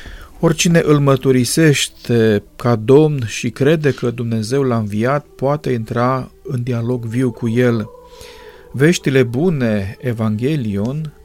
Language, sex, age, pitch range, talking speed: Romanian, male, 40-59, 115-145 Hz, 110 wpm